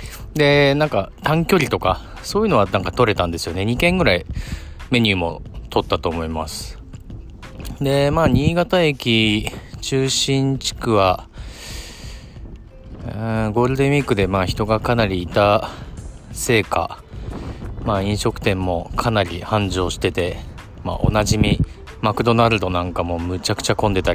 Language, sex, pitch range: Japanese, male, 90-130 Hz